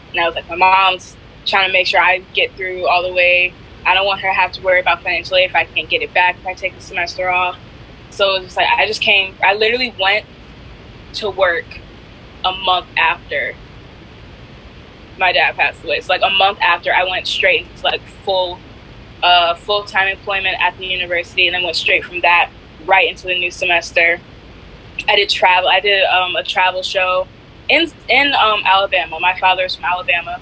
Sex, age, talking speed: female, 10-29, 205 wpm